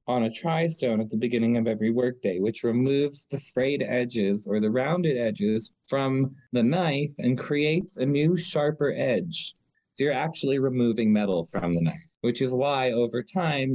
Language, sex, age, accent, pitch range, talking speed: English, male, 20-39, American, 110-150 Hz, 180 wpm